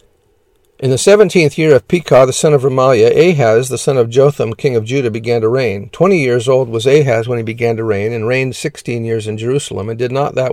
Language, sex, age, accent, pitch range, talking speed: English, male, 50-69, American, 115-145 Hz, 235 wpm